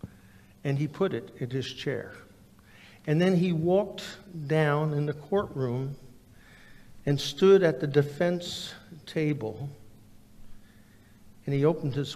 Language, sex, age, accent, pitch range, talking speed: English, male, 60-79, American, 105-165 Hz, 125 wpm